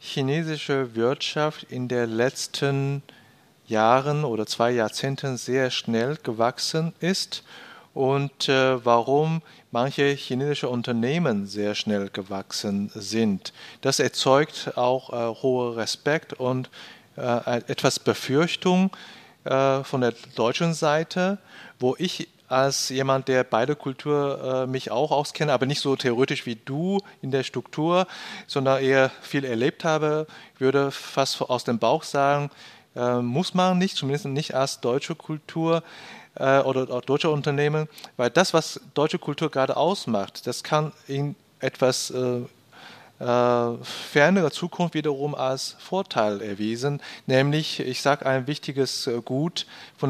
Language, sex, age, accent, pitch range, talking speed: German, male, 40-59, German, 125-150 Hz, 130 wpm